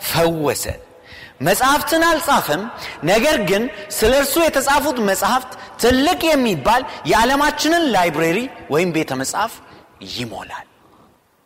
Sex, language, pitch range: male, Amharic, 160-250 Hz